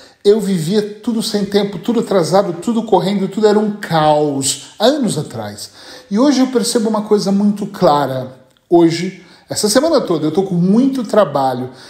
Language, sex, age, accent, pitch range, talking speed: Portuguese, male, 40-59, Brazilian, 155-210 Hz, 160 wpm